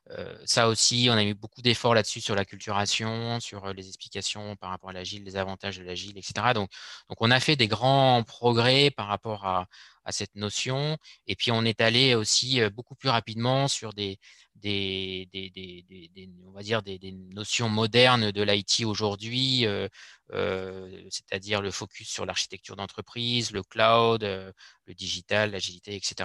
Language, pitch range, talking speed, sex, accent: French, 100-120 Hz, 175 wpm, male, French